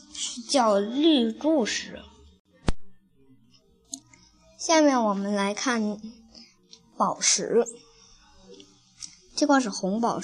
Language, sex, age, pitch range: Chinese, male, 20-39, 195-270 Hz